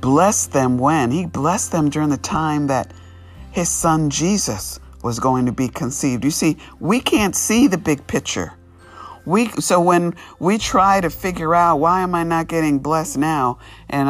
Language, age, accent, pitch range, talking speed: English, 50-69, American, 120-150 Hz, 180 wpm